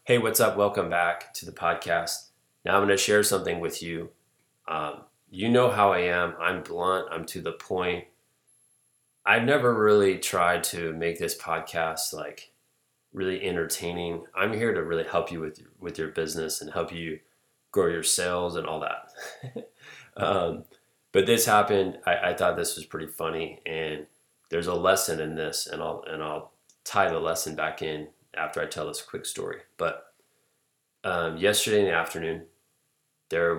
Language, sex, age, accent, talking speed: English, male, 30-49, American, 175 wpm